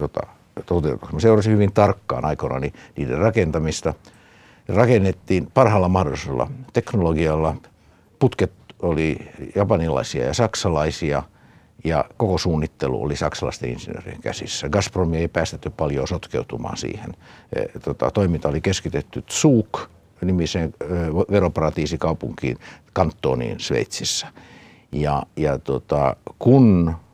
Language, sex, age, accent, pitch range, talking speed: Finnish, male, 60-79, native, 80-100 Hz, 95 wpm